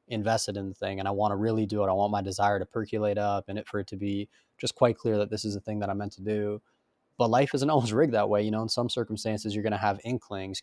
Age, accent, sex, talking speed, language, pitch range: 20-39, American, male, 305 wpm, English, 105-115 Hz